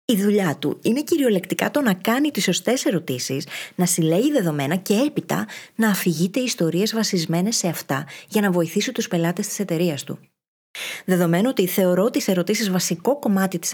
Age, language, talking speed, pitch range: 20-39, Greek, 165 wpm, 165-220 Hz